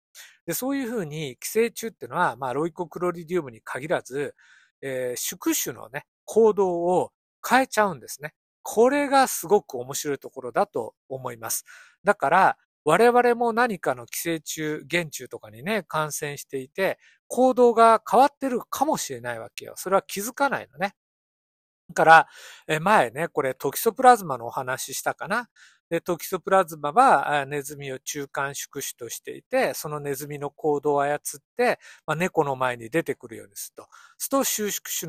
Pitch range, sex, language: 145-225 Hz, male, Japanese